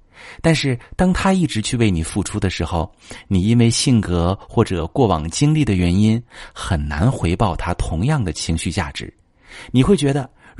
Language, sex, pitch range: Chinese, male, 85-125 Hz